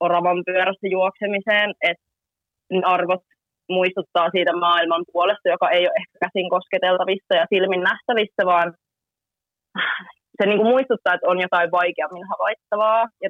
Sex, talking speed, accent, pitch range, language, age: female, 125 wpm, native, 180-205 Hz, Finnish, 20-39